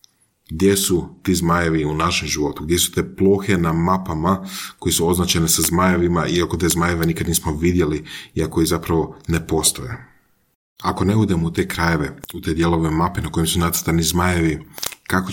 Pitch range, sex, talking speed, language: 80-95 Hz, male, 175 wpm, Croatian